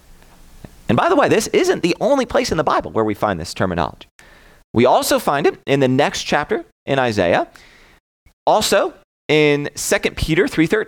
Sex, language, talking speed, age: male, English, 170 wpm, 30-49